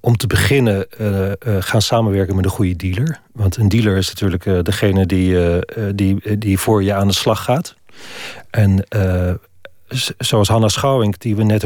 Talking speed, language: 190 wpm, Dutch